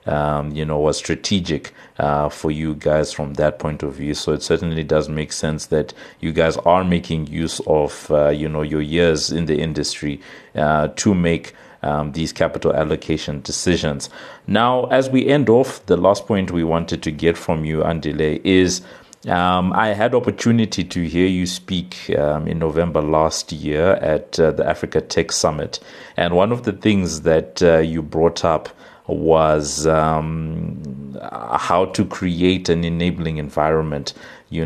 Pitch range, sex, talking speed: 75-85 Hz, male, 170 wpm